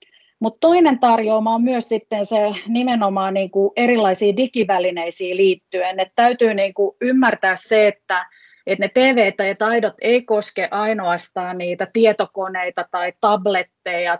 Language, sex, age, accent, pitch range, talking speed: Finnish, female, 30-49, native, 180-220 Hz, 125 wpm